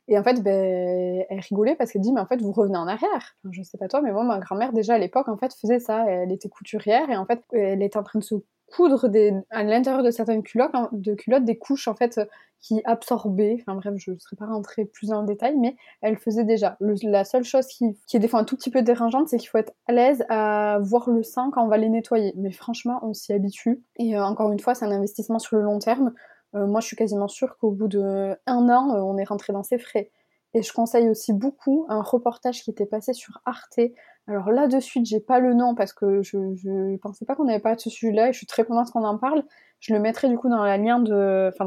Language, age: French, 20-39